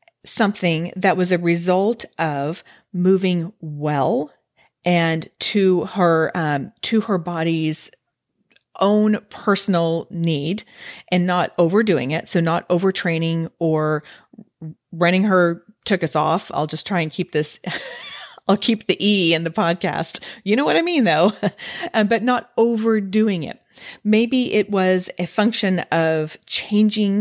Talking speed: 135 wpm